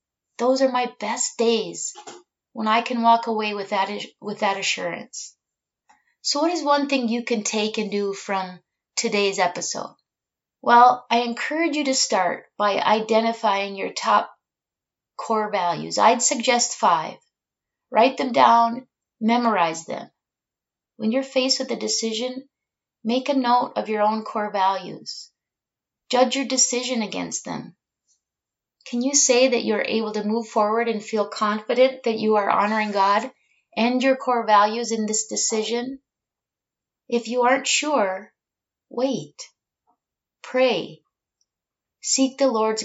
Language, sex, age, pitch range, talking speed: English, female, 30-49, 215-255 Hz, 140 wpm